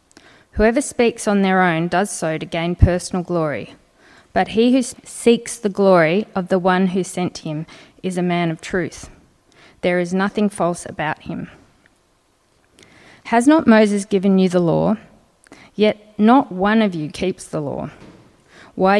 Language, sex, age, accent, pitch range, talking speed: English, female, 20-39, Australian, 175-210 Hz, 160 wpm